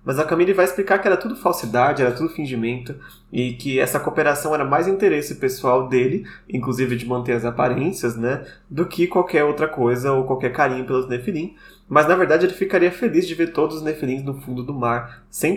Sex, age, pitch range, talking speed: male, 20-39, 125-170 Hz, 205 wpm